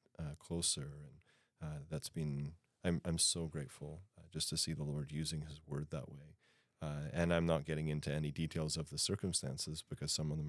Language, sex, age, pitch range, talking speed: English, male, 30-49, 75-90 Hz, 205 wpm